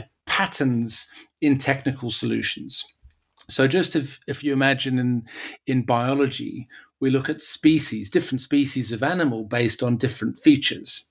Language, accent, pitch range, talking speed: English, British, 125-145 Hz, 135 wpm